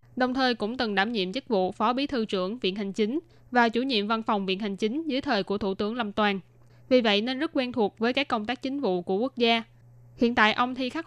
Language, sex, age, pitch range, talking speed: Vietnamese, female, 10-29, 195-245 Hz, 270 wpm